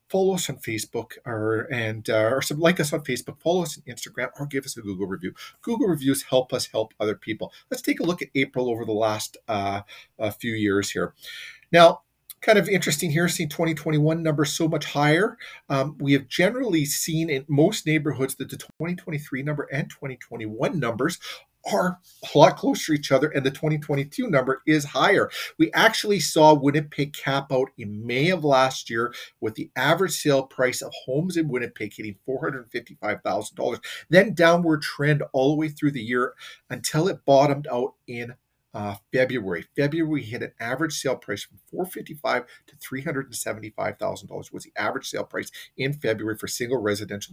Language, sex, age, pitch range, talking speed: English, male, 40-59, 125-165 Hz, 180 wpm